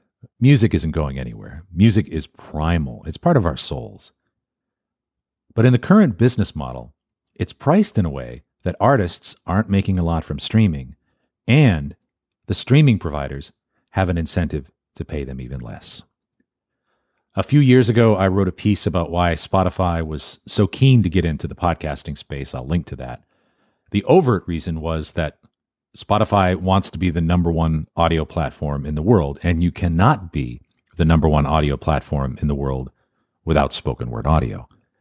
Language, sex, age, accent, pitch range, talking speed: English, male, 40-59, American, 75-105 Hz, 170 wpm